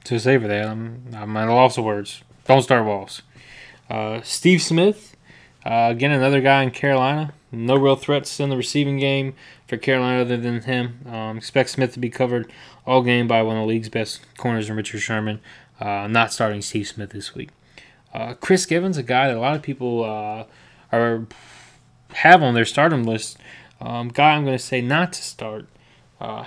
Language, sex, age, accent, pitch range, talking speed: English, male, 20-39, American, 110-135 Hz, 195 wpm